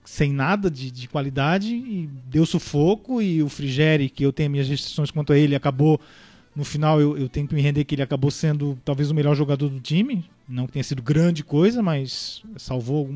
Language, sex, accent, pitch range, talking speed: Portuguese, male, Brazilian, 140-170 Hz, 205 wpm